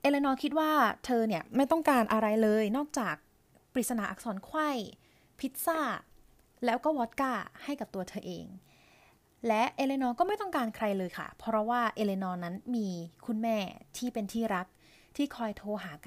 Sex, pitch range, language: female, 195-245 Hz, Thai